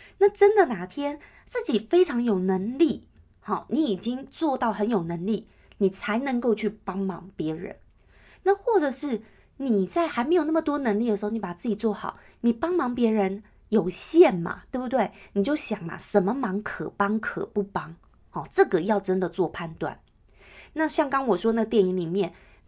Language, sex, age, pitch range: Chinese, female, 30-49, 190-255 Hz